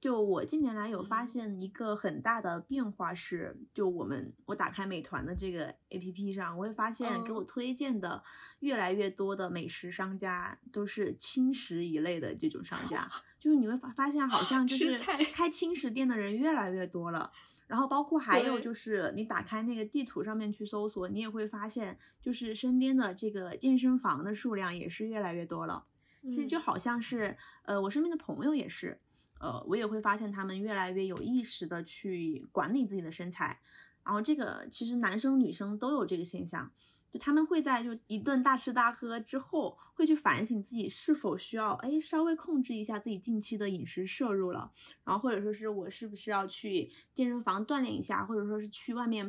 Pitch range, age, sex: 195-265 Hz, 20-39, female